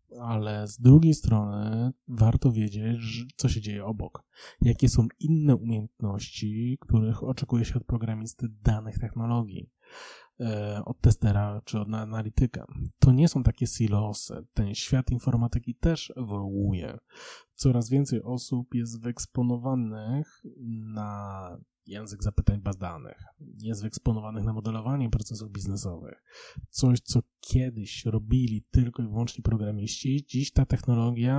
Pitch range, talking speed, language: 110-130 Hz, 120 wpm, Polish